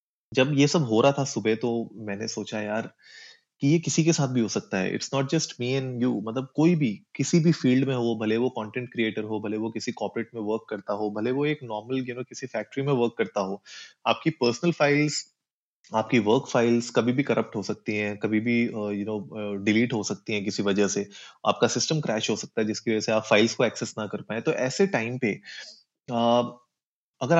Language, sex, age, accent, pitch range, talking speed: Hindi, male, 20-39, native, 110-135 Hz, 230 wpm